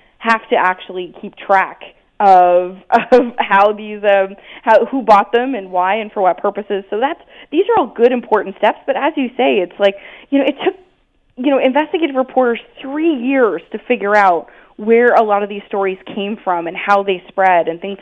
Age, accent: 20-39, American